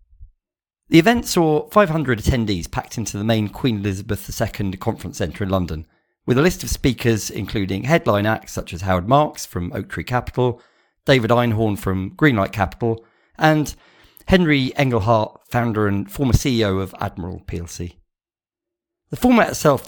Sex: male